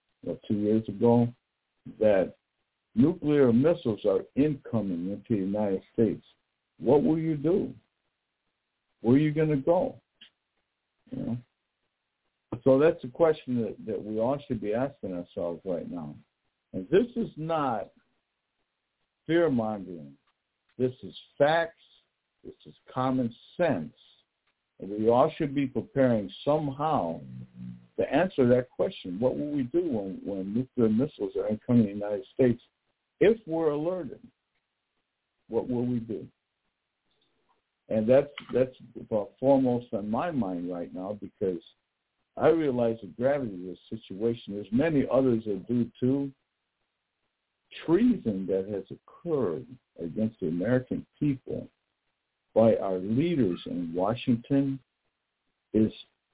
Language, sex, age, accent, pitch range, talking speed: English, male, 60-79, American, 105-145 Hz, 130 wpm